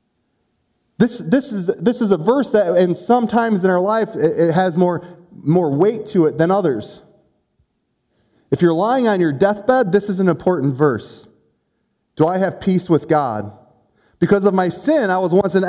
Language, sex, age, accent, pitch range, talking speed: English, male, 30-49, American, 165-220 Hz, 170 wpm